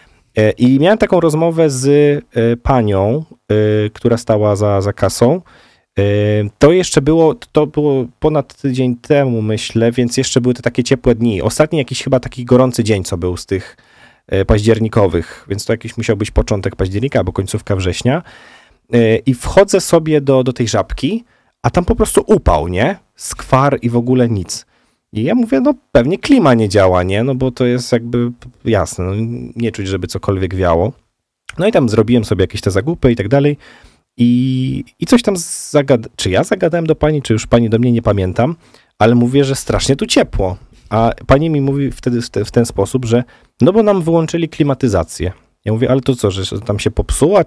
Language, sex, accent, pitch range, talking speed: Polish, male, native, 105-135 Hz, 185 wpm